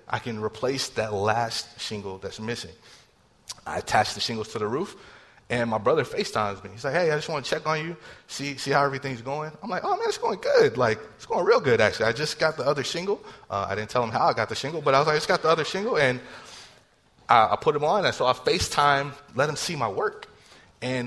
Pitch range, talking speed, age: 110-150 Hz, 255 wpm, 30-49